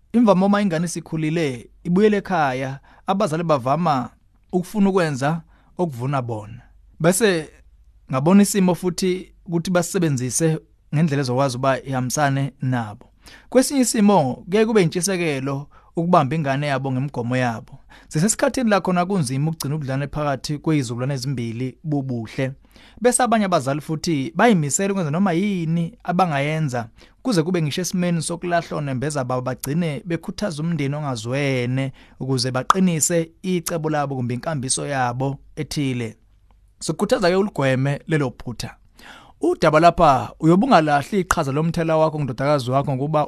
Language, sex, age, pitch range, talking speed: English, male, 30-49, 135-175 Hz, 120 wpm